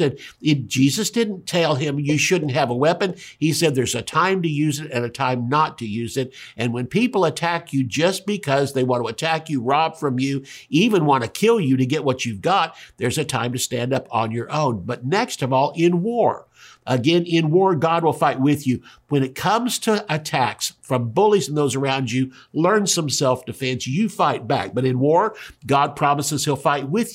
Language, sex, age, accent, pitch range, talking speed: English, male, 50-69, American, 130-175 Hz, 215 wpm